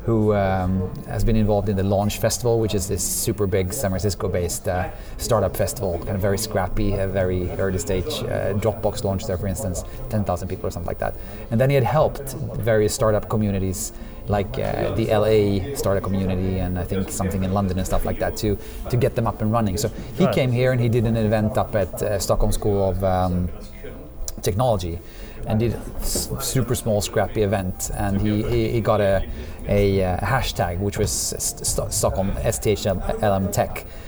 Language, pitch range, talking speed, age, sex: English, 95-115 Hz, 190 wpm, 30-49, male